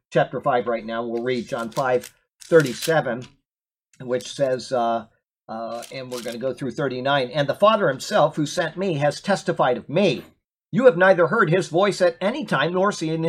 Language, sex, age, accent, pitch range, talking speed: English, male, 50-69, American, 160-200 Hz, 190 wpm